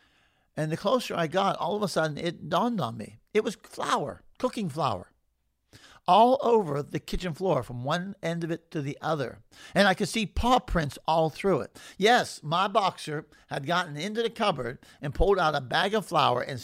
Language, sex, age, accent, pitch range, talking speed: English, male, 50-69, American, 125-170 Hz, 200 wpm